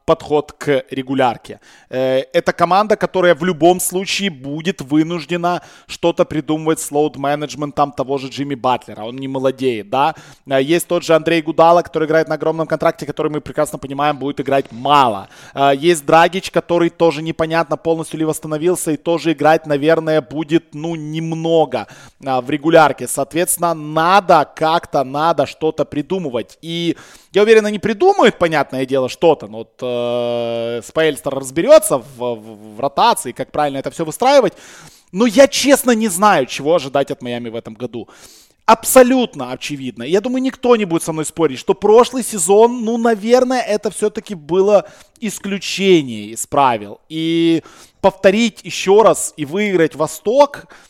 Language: Russian